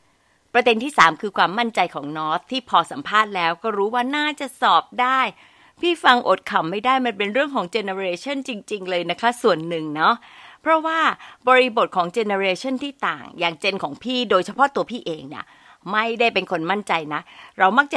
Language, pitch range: Thai, 175-250 Hz